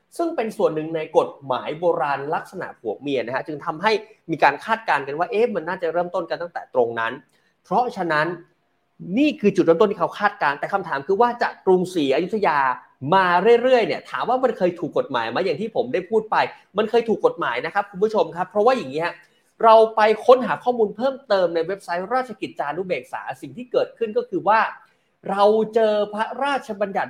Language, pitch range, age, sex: Thai, 175-235 Hz, 30-49, male